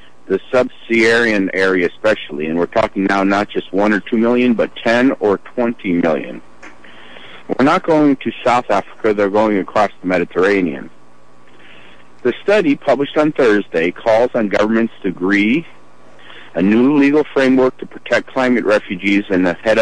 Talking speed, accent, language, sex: 155 wpm, American, English, male